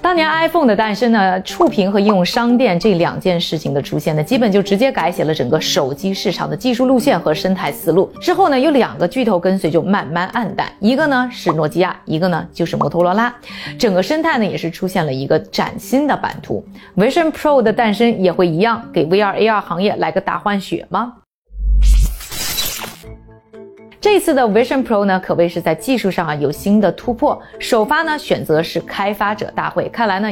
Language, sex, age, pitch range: Chinese, female, 20-39, 175-245 Hz